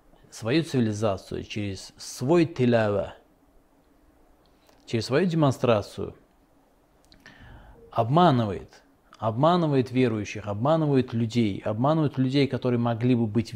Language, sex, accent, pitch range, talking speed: Russian, male, native, 115-140 Hz, 85 wpm